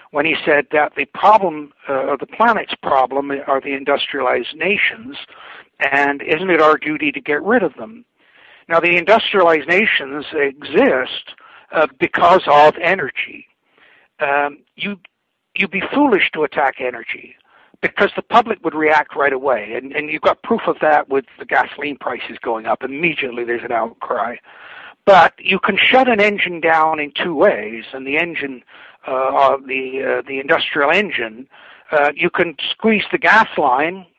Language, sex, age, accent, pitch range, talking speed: English, male, 60-79, American, 145-190 Hz, 170 wpm